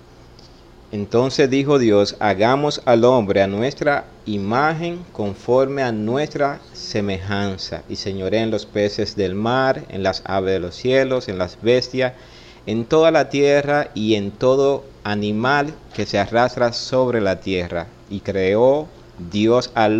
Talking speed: 140 wpm